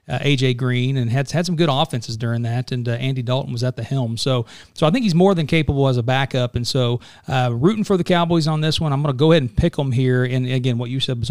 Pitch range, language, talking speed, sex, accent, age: 125-155 Hz, English, 290 wpm, male, American, 40-59